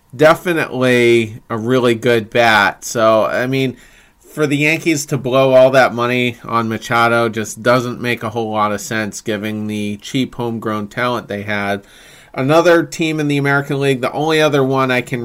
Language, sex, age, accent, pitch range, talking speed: English, male, 30-49, American, 110-130 Hz, 175 wpm